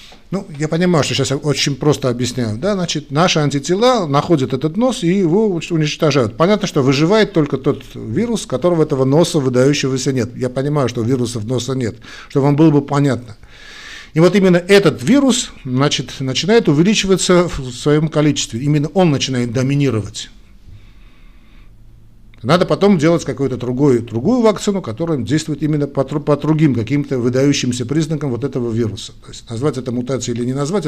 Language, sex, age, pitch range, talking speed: Russian, male, 50-69, 120-165 Hz, 155 wpm